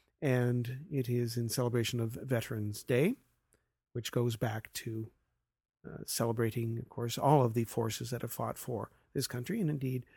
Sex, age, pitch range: male, 40-59, 120-140 Hz